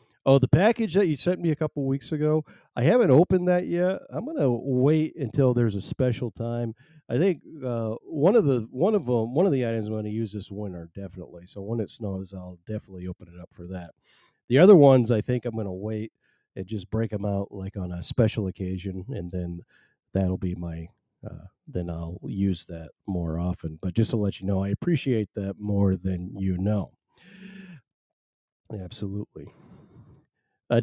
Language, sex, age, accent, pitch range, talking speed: English, male, 40-59, American, 95-135 Hz, 200 wpm